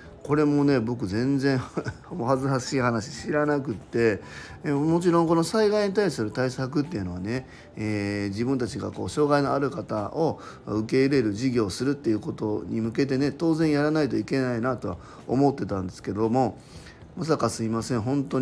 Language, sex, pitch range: Japanese, male, 110-150 Hz